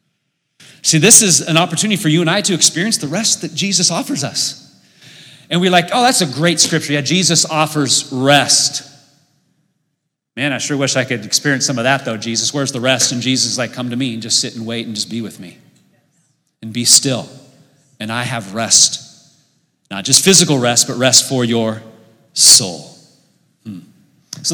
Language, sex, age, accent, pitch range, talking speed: English, male, 30-49, American, 130-170 Hz, 190 wpm